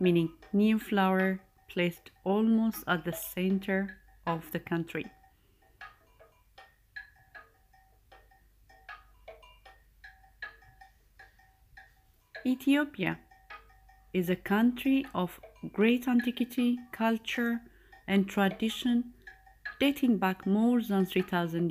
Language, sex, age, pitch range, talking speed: English, female, 30-49, 175-240 Hz, 70 wpm